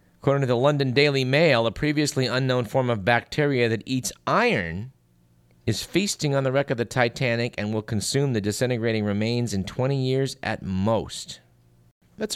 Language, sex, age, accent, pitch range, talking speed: English, male, 50-69, American, 100-130 Hz, 170 wpm